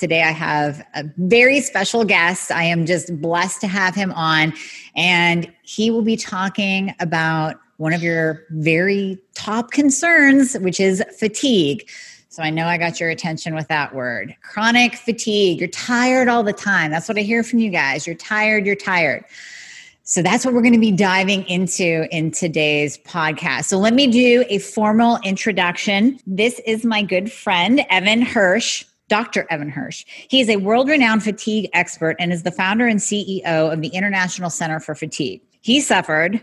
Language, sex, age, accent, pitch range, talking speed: English, female, 30-49, American, 160-215 Hz, 175 wpm